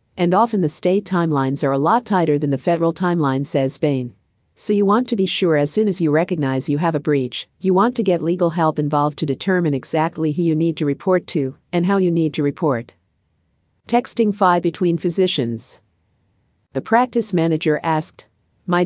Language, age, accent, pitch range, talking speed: English, 50-69, American, 145-185 Hz, 195 wpm